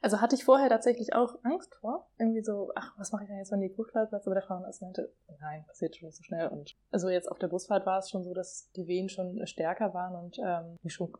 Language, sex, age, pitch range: German, female, 20-39, 180-210 Hz